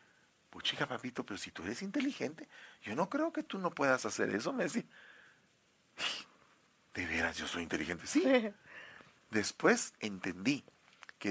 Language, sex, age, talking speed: English, male, 40-59, 150 wpm